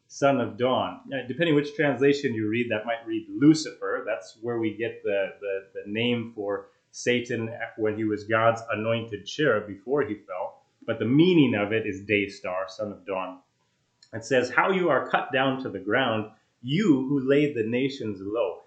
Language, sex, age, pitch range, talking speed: English, male, 30-49, 110-145 Hz, 180 wpm